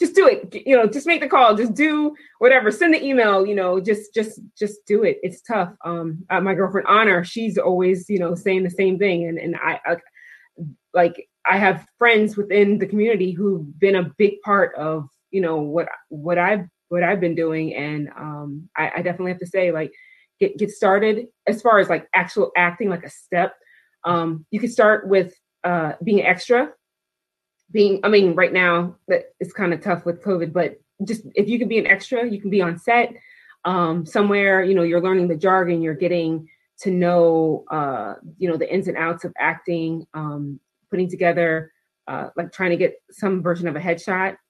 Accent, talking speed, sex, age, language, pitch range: American, 200 wpm, female, 20-39, English, 170-210 Hz